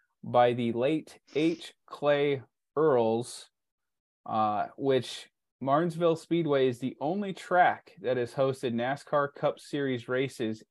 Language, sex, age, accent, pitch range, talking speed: English, male, 20-39, American, 115-140 Hz, 120 wpm